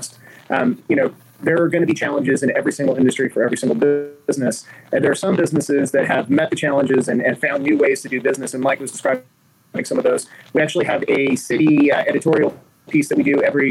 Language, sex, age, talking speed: English, male, 30-49, 235 wpm